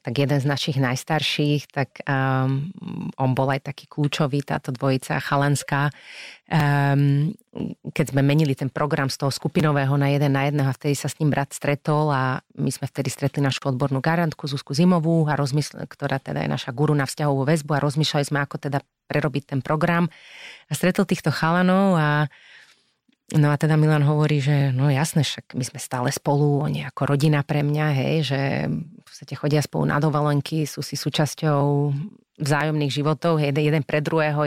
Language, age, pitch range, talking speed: Slovak, 30-49, 140-160 Hz, 170 wpm